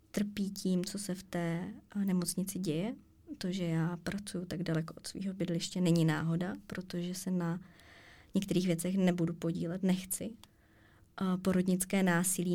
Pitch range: 165-185 Hz